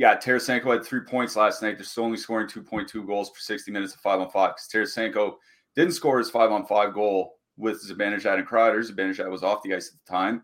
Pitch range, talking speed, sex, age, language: 105-130 Hz, 245 wpm, male, 30-49, English